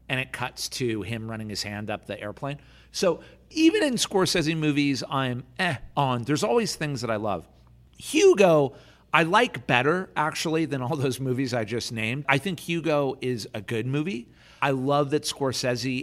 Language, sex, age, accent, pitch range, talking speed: English, male, 50-69, American, 115-150 Hz, 180 wpm